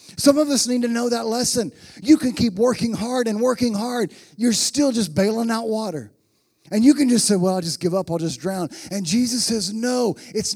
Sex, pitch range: male, 170-235 Hz